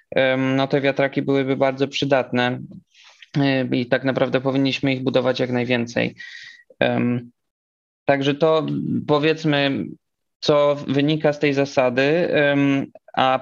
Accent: native